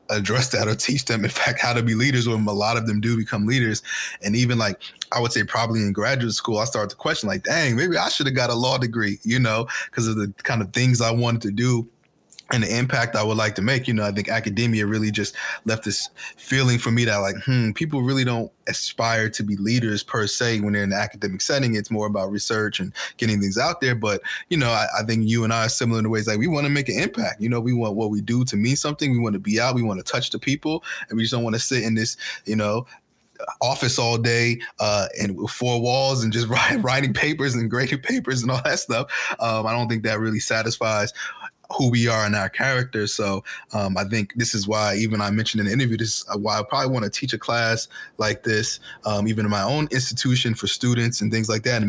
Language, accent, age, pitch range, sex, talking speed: English, American, 20-39, 105-125 Hz, male, 260 wpm